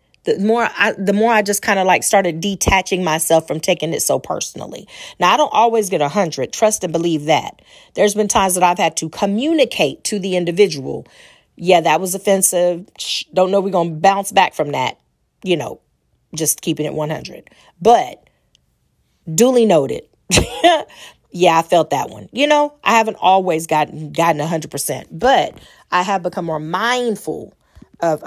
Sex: female